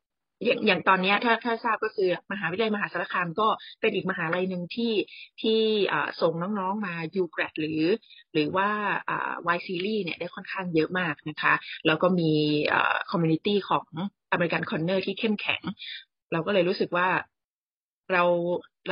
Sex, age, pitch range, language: female, 20-39, 175-215 Hz, Thai